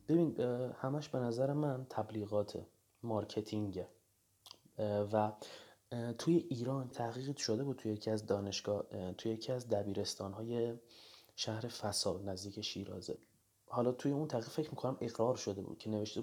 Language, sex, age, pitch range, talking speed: Persian, male, 30-49, 105-125 Hz, 135 wpm